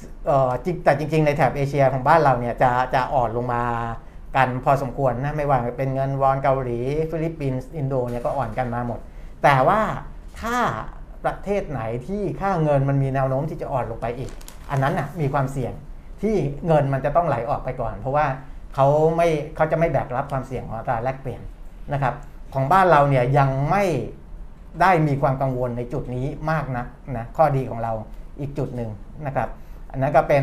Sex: male